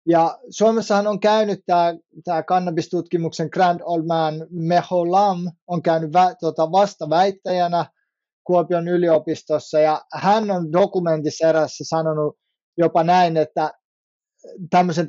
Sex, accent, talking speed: male, native, 105 wpm